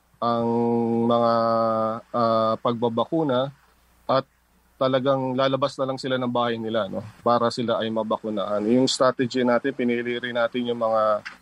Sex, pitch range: male, 110-125 Hz